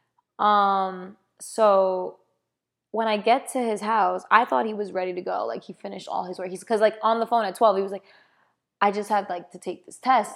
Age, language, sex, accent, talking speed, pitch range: 20-39, English, female, American, 230 wpm, 190-230 Hz